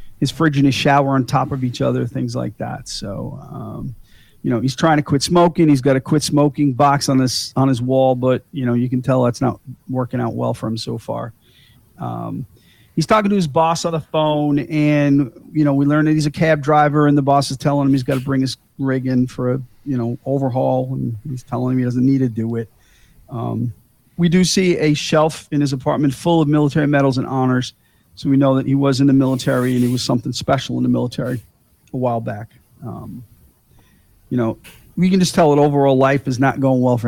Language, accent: English, American